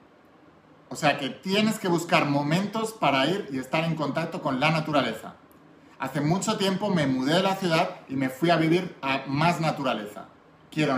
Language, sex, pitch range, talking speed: Spanish, male, 145-175 Hz, 180 wpm